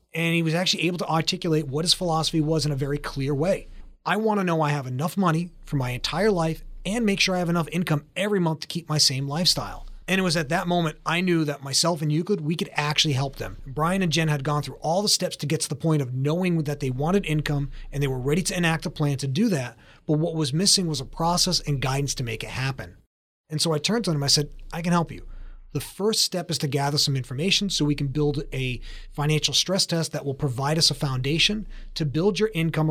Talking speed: 255 wpm